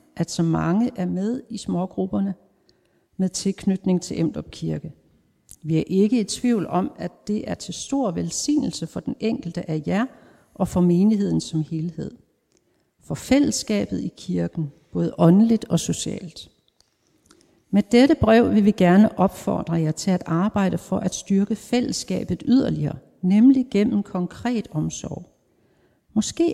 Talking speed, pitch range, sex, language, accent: 140 wpm, 170-225 Hz, female, Danish, native